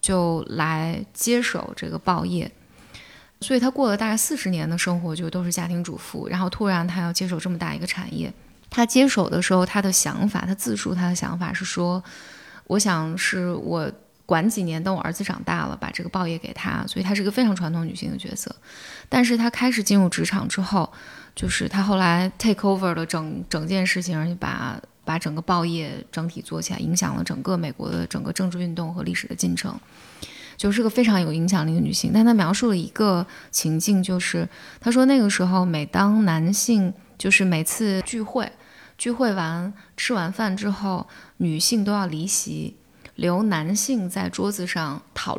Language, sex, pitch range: Chinese, female, 170-210 Hz